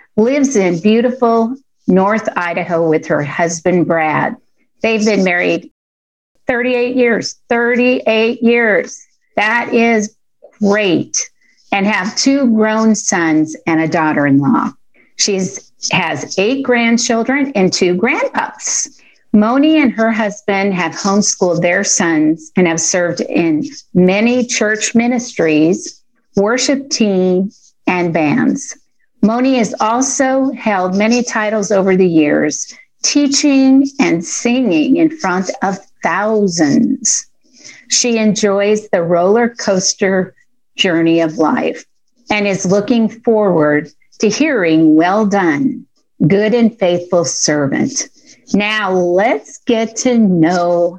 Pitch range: 185-245 Hz